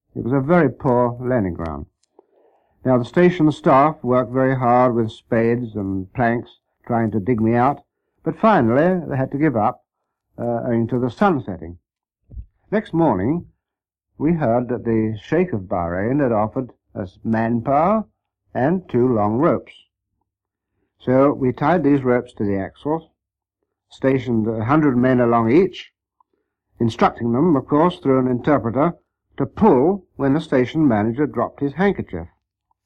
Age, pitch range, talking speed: 60-79, 105-145 Hz, 150 wpm